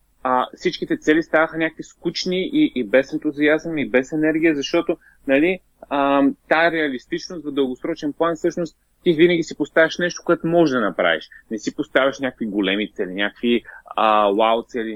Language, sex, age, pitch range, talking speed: Bulgarian, male, 30-49, 110-155 Hz, 160 wpm